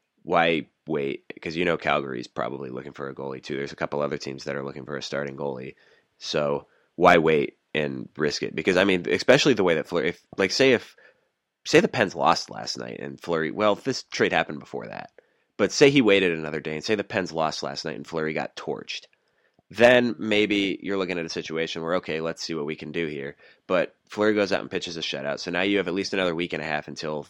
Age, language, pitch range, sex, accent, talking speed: 30-49, English, 70-90 Hz, male, American, 240 wpm